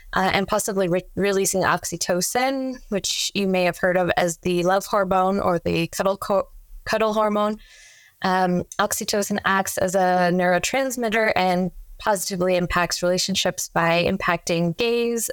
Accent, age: American, 20-39